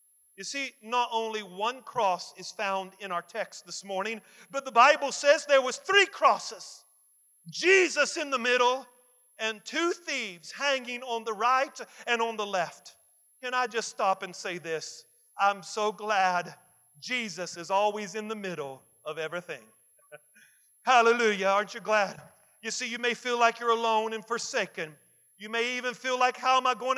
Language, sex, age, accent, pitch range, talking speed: English, male, 40-59, American, 175-250 Hz, 170 wpm